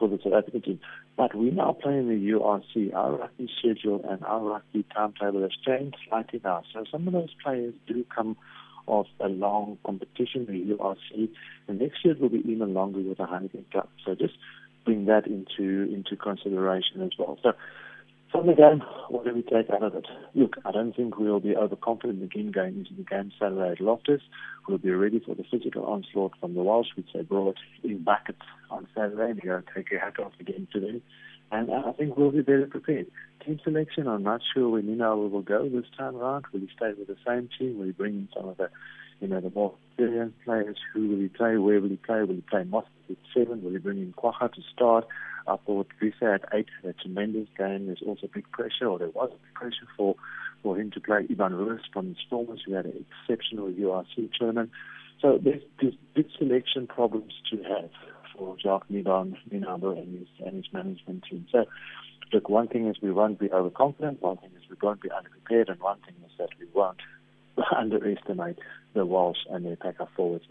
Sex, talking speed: male, 210 wpm